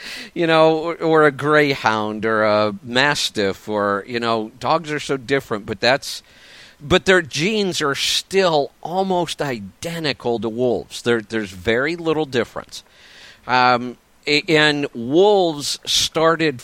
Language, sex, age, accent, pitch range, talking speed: English, male, 50-69, American, 115-150 Hz, 130 wpm